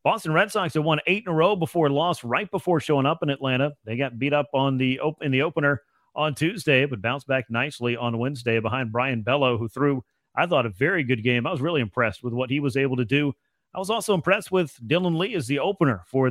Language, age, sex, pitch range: English, 40-59, male, 130-160 Hz